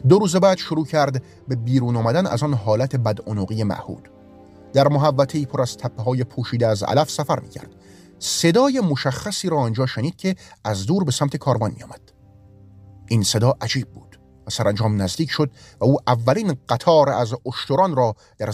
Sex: male